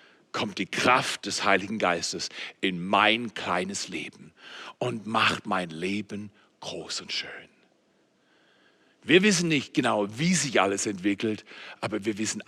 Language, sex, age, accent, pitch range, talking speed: German, male, 60-79, German, 140-230 Hz, 135 wpm